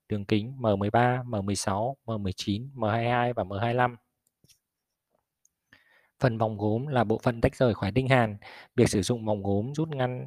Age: 20-39